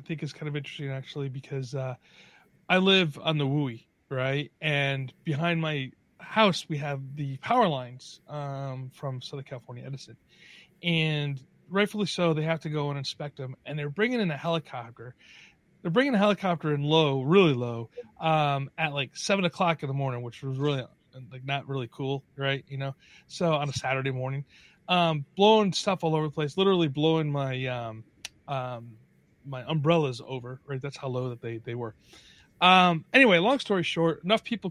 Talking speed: 180 wpm